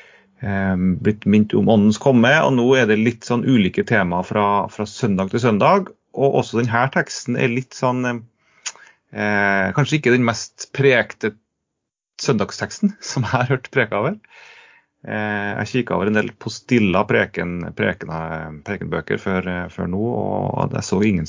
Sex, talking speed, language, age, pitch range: male, 165 wpm, English, 30-49, 105-140 Hz